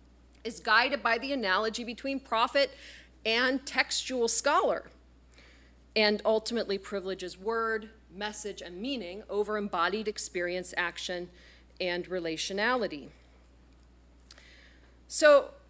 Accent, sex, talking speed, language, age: American, female, 90 wpm, English, 40-59